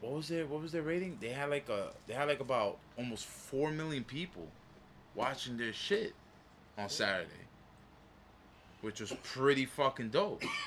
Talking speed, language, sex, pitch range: 165 wpm, English, male, 100-130 Hz